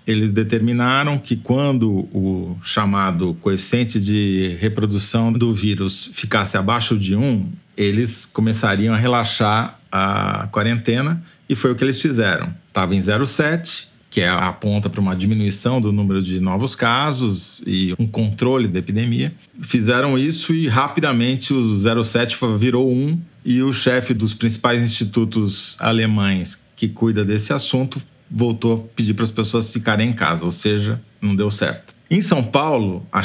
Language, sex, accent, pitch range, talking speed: Portuguese, male, Brazilian, 105-125 Hz, 150 wpm